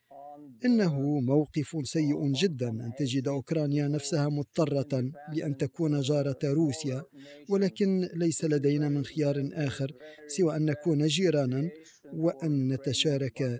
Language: Arabic